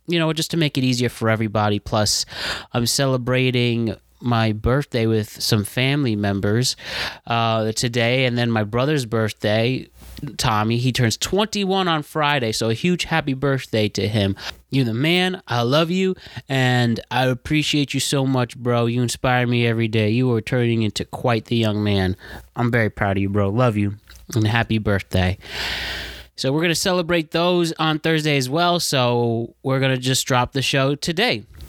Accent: American